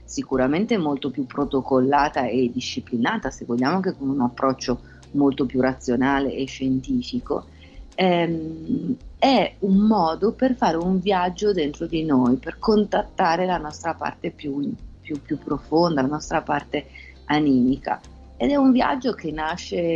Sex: female